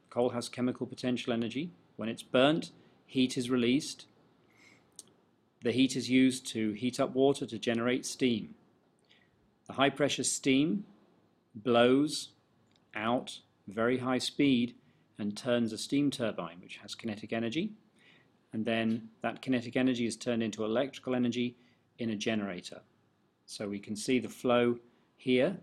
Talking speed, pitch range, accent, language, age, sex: 140 wpm, 110-130 Hz, British, English, 40-59, male